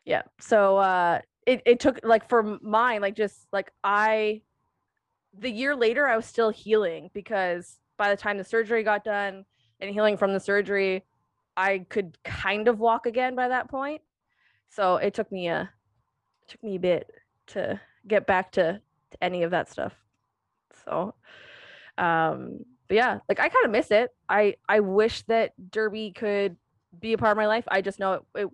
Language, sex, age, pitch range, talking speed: English, female, 20-39, 190-230 Hz, 180 wpm